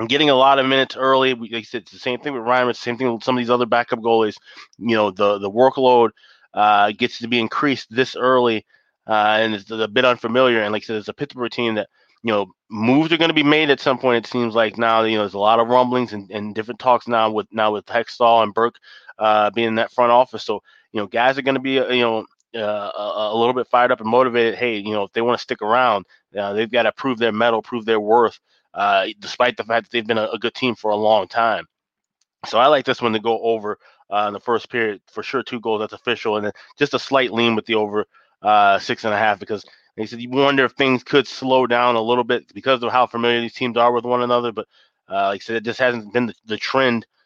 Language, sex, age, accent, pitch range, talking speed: English, male, 20-39, American, 110-125 Hz, 275 wpm